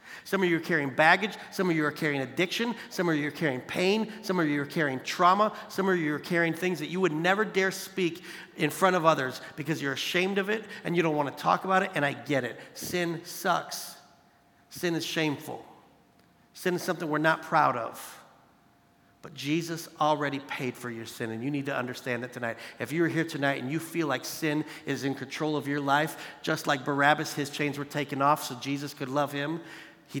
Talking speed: 220 wpm